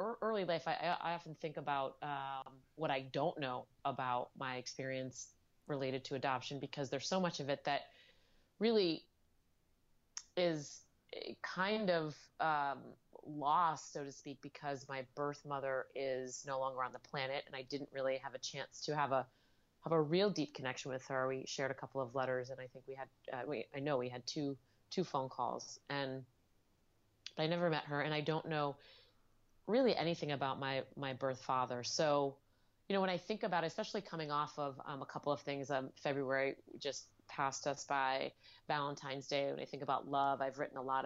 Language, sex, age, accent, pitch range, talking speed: English, female, 30-49, American, 130-150 Hz, 195 wpm